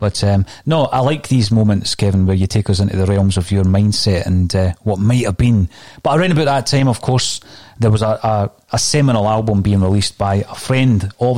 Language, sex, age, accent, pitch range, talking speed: English, male, 30-49, British, 100-120 Hz, 225 wpm